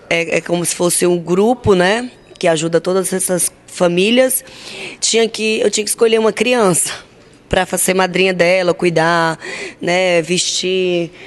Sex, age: female, 20-39